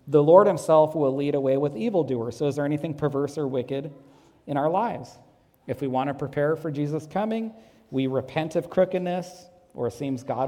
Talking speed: 195 wpm